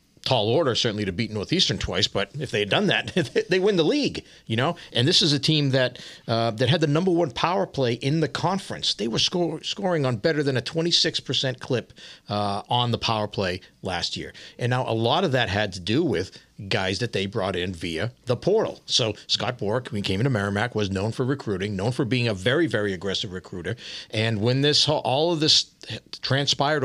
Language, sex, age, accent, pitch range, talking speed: English, male, 50-69, American, 100-130 Hz, 225 wpm